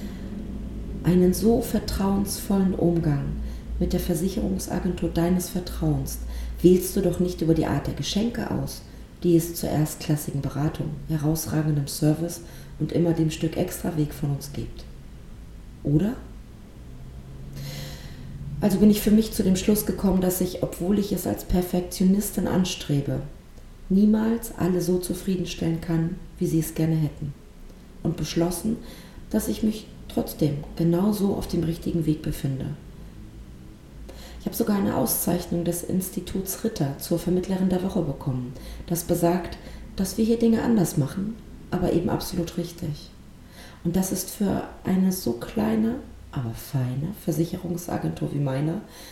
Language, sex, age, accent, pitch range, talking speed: German, female, 40-59, German, 155-190 Hz, 140 wpm